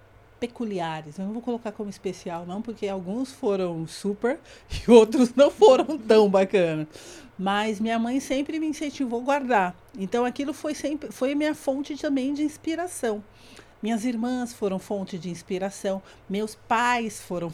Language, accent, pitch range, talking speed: Portuguese, Brazilian, 185-255 Hz, 150 wpm